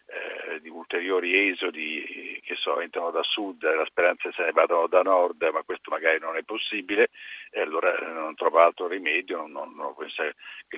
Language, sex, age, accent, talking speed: Italian, male, 50-69, native, 185 wpm